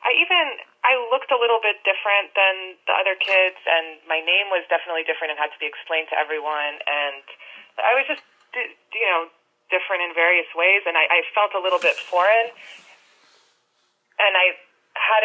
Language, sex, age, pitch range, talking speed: English, female, 20-39, 155-215 Hz, 180 wpm